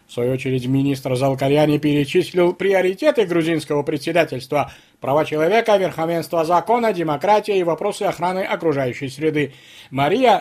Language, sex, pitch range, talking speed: Russian, male, 155-215 Hz, 115 wpm